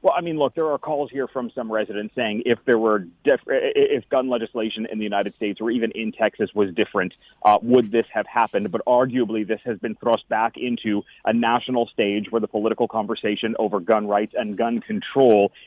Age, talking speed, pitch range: 30-49, 205 wpm, 110-130 Hz